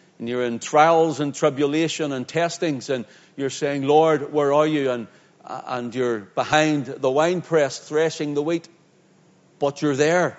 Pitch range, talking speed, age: 135-165 Hz, 160 wpm, 60-79